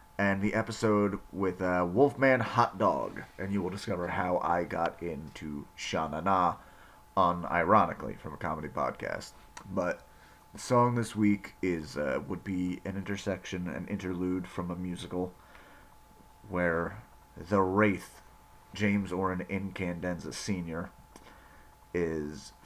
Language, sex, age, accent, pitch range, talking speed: English, male, 30-49, American, 90-105 Hz, 125 wpm